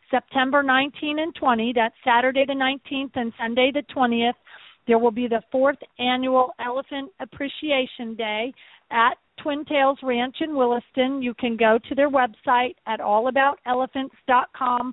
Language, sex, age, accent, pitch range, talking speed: English, female, 50-69, American, 235-270 Hz, 140 wpm